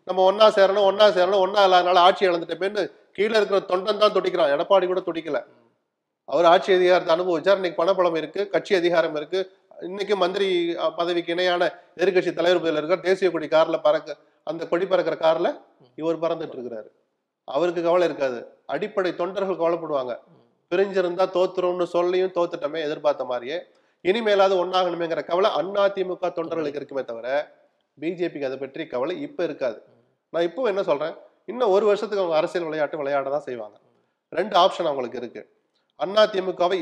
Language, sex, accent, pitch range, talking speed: Tamil, male, native, 155-190 Hz, 145 wpm